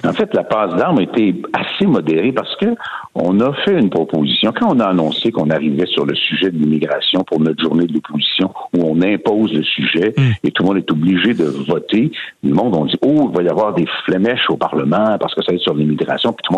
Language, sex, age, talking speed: French, male, 60-79, 245 wpm